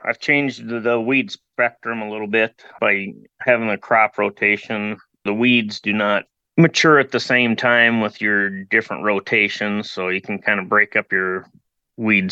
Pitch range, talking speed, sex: 95-110 Hz, 170 wpm, male